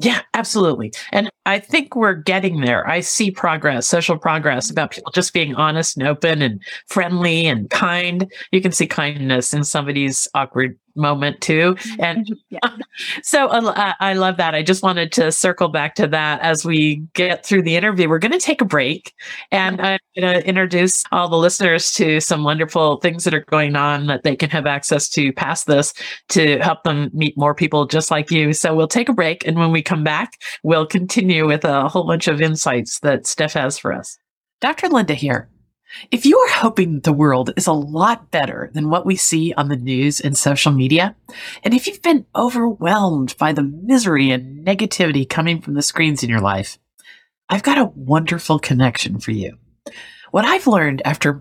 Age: 50-69